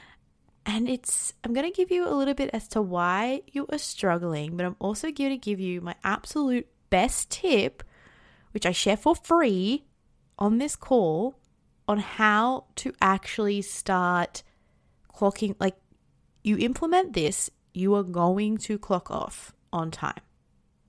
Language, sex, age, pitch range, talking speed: English, female, 20-39, 165-220 Hz, 150 wpm